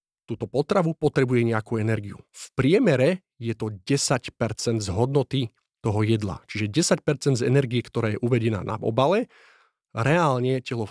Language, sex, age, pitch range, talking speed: Slovak, male, 30-49, 110-135 Hz, 140 wpm